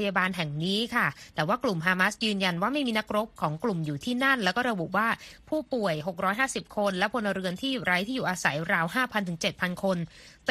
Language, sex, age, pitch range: Thai, female, 20-39, 170-210 Hz